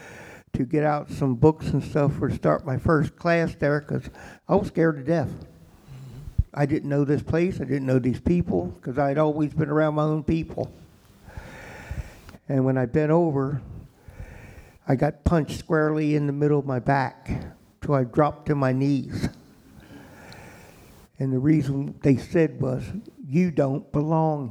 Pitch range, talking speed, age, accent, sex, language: 130-150 Hz, 165 wpm, 50-69, American, male, English